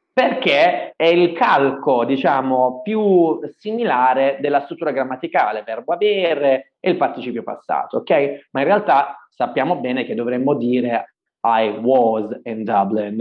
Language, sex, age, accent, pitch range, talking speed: Italian, male, 30-49, native, 120-185 Hz, 130 wpm